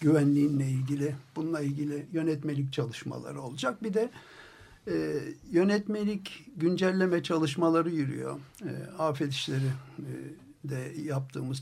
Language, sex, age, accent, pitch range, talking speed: Turkish, male, 60-79, native, 145-195 Hz, 105 wpm